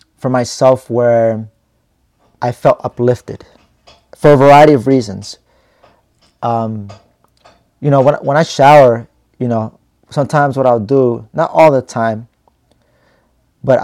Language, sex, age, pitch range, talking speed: English, male, 30-49, 110-135 Hz, 120 wpm